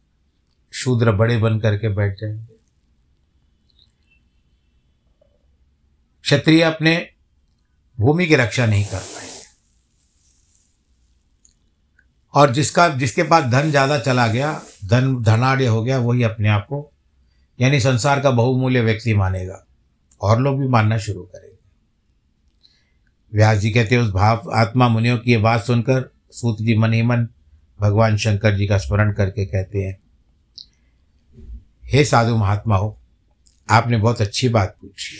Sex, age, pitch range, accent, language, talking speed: male, 60-79, 75-125 Hz, native, Hindi, 125 wpm